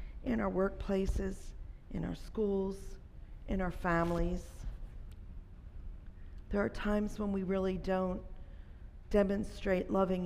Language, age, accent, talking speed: English, 50-69, American, 105 wpm